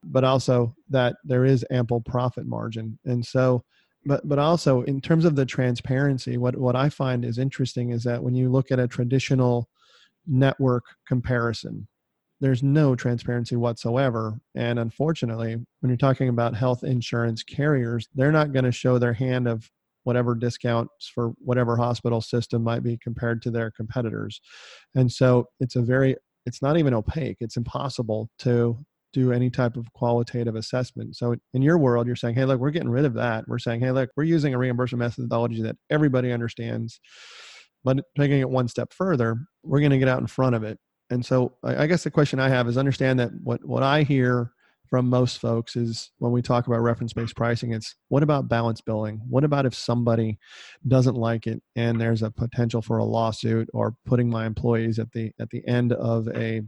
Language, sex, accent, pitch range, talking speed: English, male, American, 115-130 Hz, 190 wpm